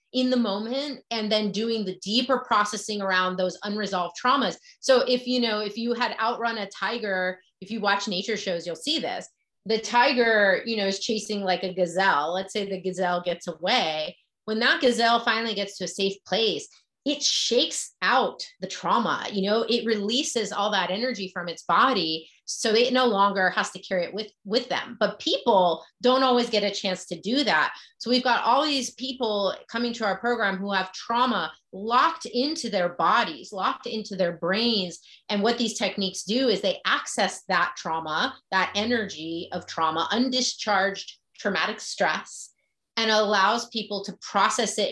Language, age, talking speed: English, 30-49, 180 wpm